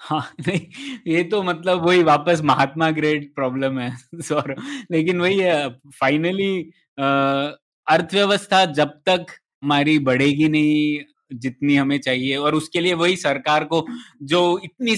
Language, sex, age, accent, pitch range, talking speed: Hindi, male, 20-39, native, 145-180 Hz, 130 wpm